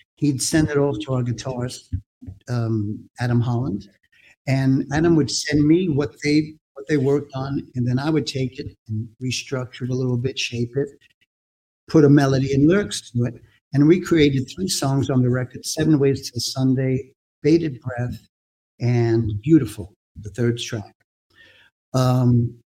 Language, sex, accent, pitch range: English, male, American, 115-145 Hz